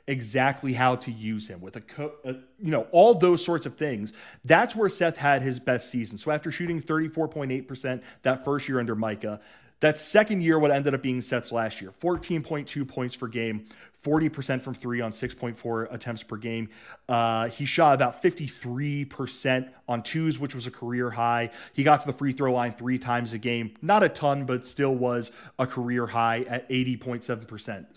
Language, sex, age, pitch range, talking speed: English, male, 30-49, 120-145 Hz, 195 wpm